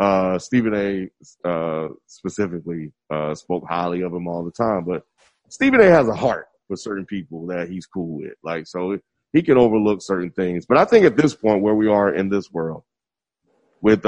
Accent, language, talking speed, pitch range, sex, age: American, English, 195 wpm, 90-110 Hz, male, 30-49